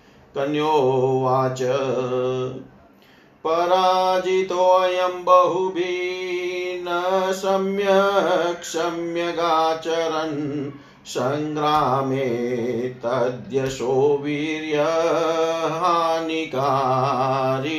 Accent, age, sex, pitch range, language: native, 50-69, male, 135-180 Hz, Hindi